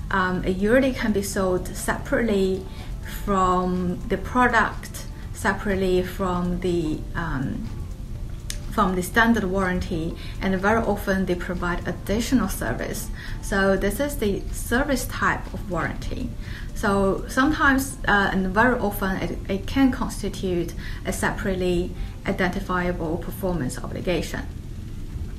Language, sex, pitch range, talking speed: English, female, 180-225 Hz, 110 wpm